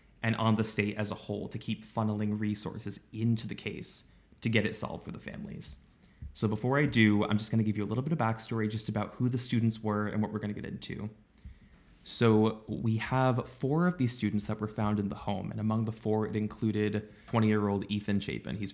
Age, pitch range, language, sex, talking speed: 20-39, 105-115 Hz, English, male, 230 wpm